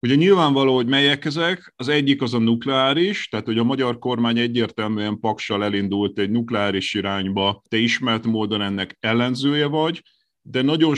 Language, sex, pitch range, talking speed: Hungarian, male, 105-140 Hz, 160 wpm